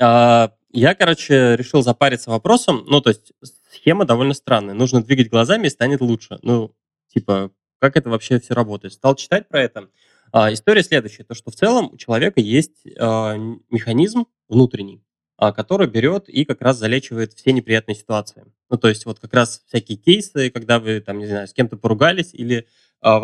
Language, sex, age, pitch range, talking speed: Russian, male, 20-39, 110-135 Hz, 180 wpm